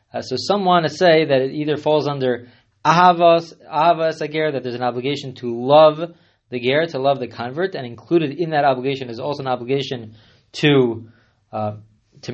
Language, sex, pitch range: English, male, 125-160 Hz